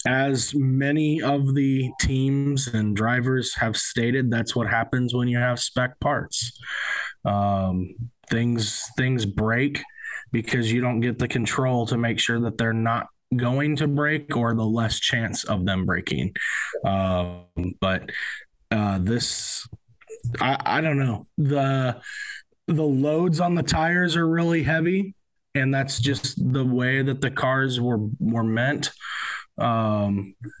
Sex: male